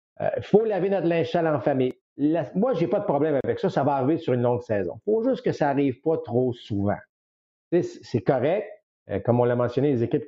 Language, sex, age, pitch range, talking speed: French, male, 50-69, 120-165 Hz, 235 wpm